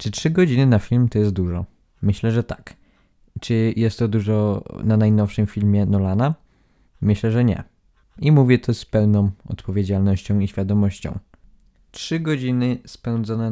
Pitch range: 100-115 Hz